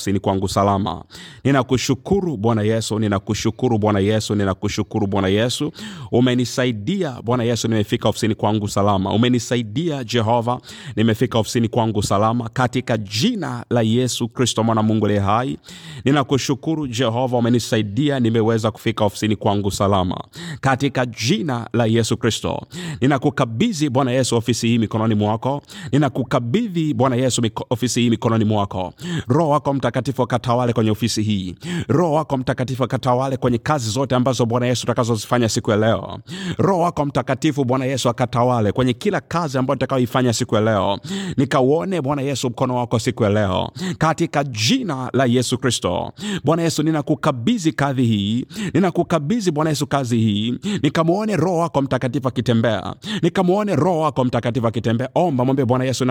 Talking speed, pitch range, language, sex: 80 wpm, 115-145 Hz, Swahili, male